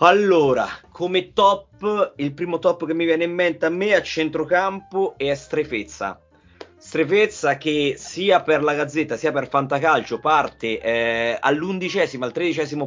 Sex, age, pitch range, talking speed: male, 30-49, 135-175 Hz, 145 wpm